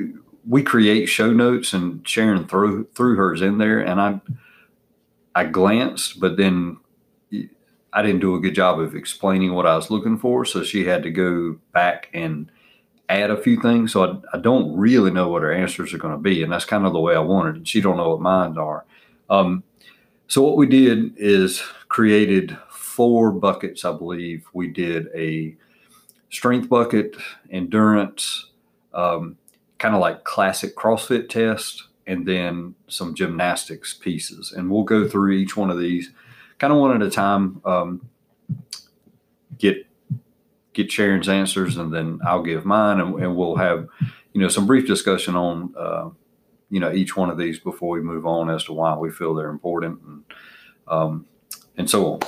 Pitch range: 85-110 Hz